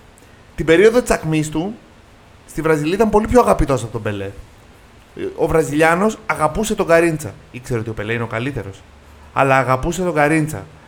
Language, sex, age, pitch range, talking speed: Greek, male, 30-49, 110-160 Hz, 160 wpm